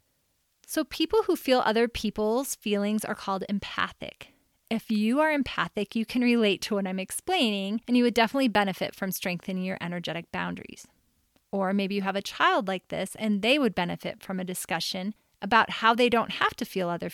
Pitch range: 195-245 Hz